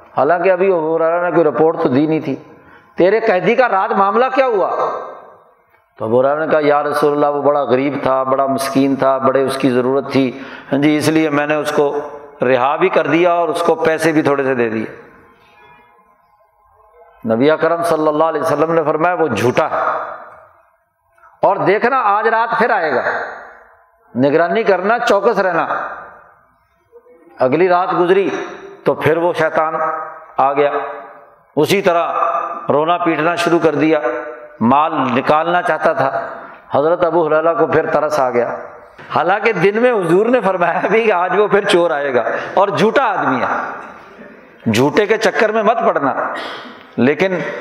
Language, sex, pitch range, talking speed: Urdu, male, 150-195 Hz, 165 wpm